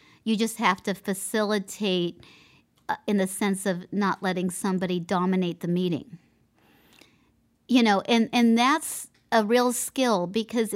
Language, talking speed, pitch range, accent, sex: English, 135 wpm, 190-235 Hz, American, female